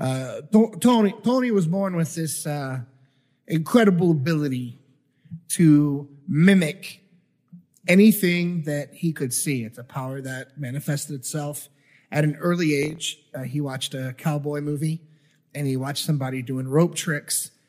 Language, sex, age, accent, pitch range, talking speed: English, male, 30-49, American, 130-165 Hz, 135 wpm